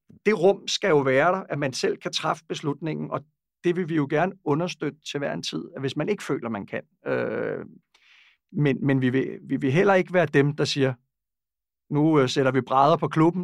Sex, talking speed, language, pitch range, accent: male, 215 wpm, Danish, 135-175 Hz, native